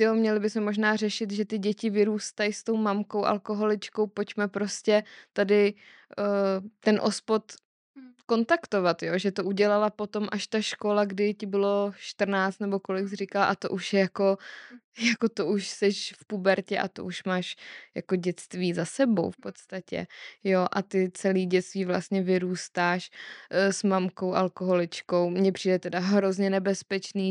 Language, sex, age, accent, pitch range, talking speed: Czech, female, 20-39, native, 190-210 Hz, 160 wpm